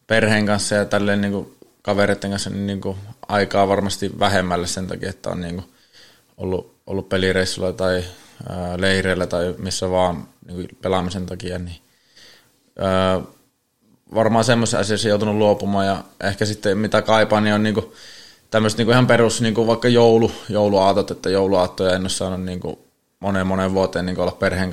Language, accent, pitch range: Finnish, native, 95-105 Hz